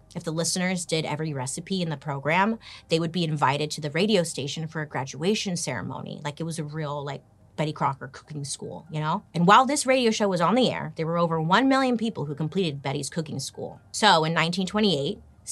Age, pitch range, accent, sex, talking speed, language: 30-49, 145-195 Hz, American, female, 215 wpm, English